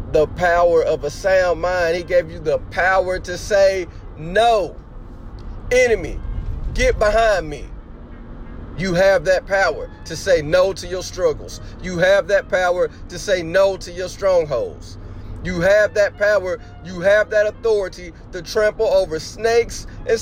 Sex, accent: male, American